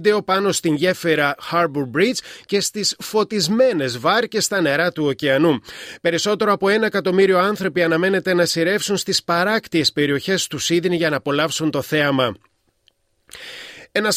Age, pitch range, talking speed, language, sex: 30-49, 155-190 Hz, 135 wpm, Greek, male